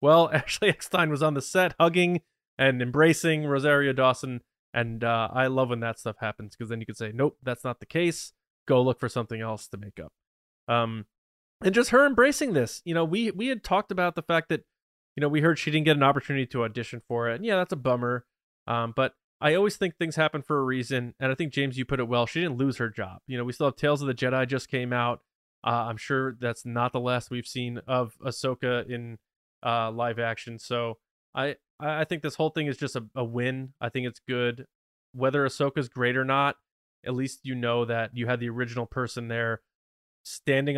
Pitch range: 120-150 Hz